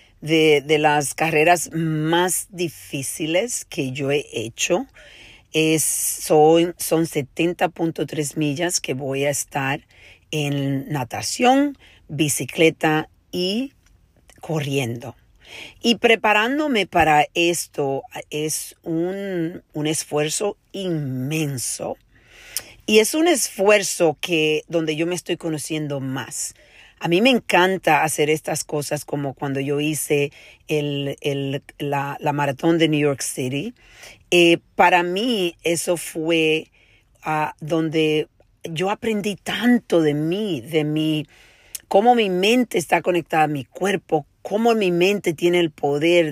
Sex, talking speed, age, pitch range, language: female, 115 wpm, 40-59, 145-180 Hz, Spanish